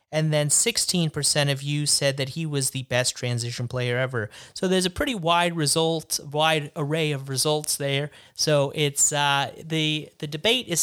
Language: English